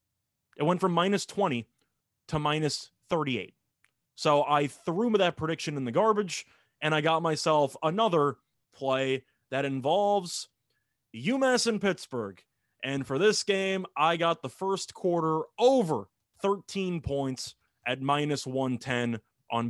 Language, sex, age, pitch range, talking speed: English, male, 30-49, 135-185 Hz, 130 wpm